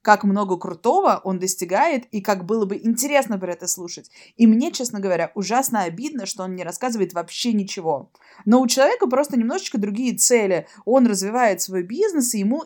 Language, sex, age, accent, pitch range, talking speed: Russian, female, 20-39, native, 195-240 Hz, 180 wpm